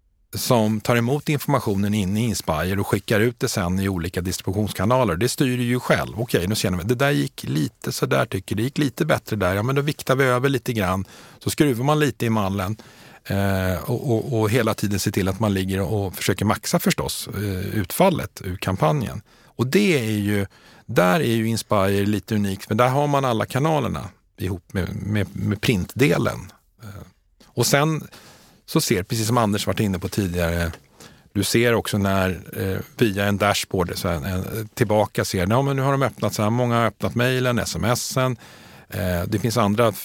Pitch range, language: 95-125 Hz, Swedish